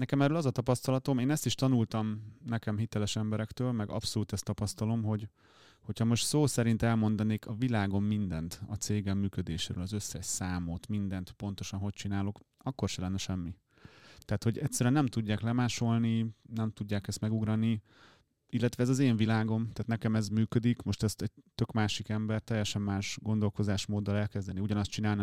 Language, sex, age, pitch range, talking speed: Hungarian, male, 30-49, 105-115 Hz, 165 wpm